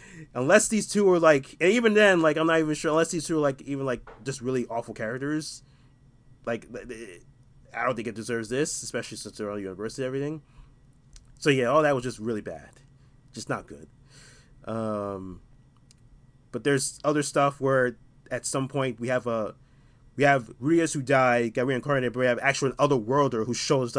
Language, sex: English, male